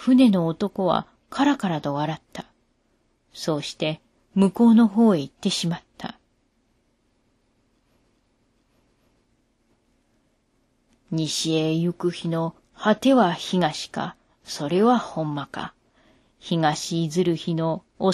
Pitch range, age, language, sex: 150-215 Hz, 40-59, Japanese, female